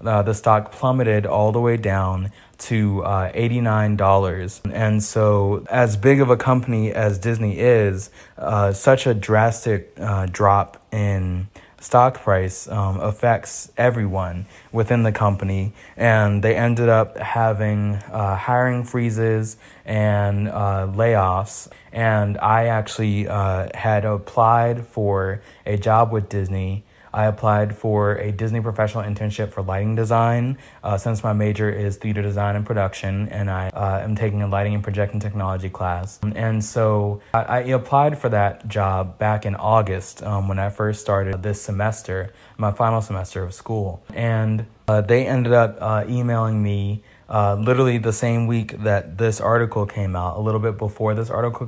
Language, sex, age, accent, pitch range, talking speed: English, male, 20-39, American, 100-115 Hz, 155 wpm